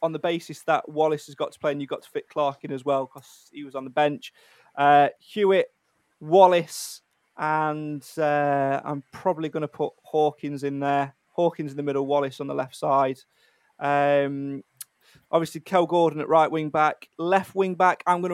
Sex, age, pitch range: male, 20-39, 145-165 Hz